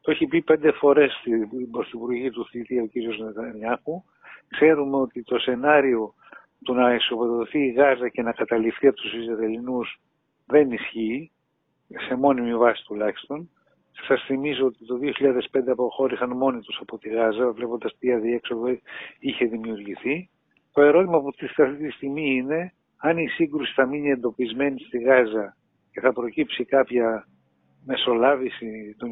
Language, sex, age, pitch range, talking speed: Greek, male, 60-79, 120-150 Hz, 150 wpm